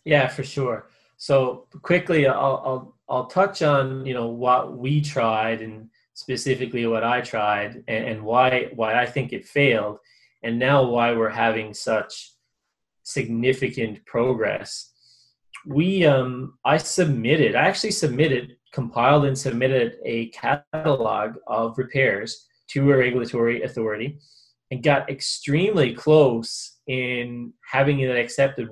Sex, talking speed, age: male, 130 wpm, 20-39